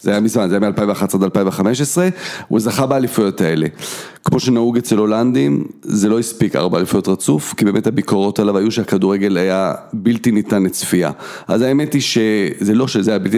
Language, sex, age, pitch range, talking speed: Hebrew, male, 40-59, 105-140 Hz, 180 wpm